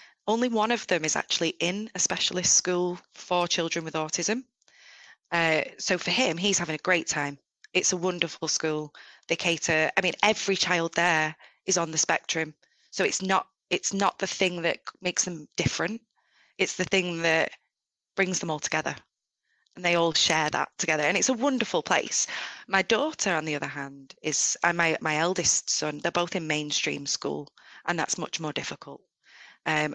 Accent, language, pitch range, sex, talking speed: British, English, 155-185 Hz, female, 180 wpm